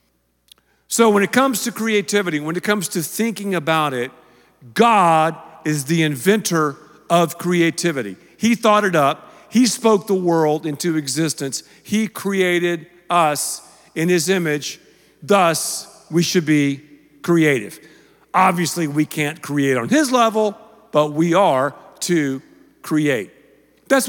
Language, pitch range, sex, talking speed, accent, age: English, 155-220 Hz, male, 130 wpm, American, 50-69